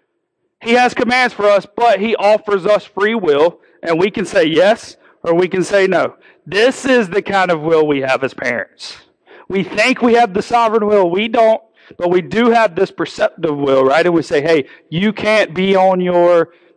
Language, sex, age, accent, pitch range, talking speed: English, male, 40-59, American, 190-265 Hz, 205 wpm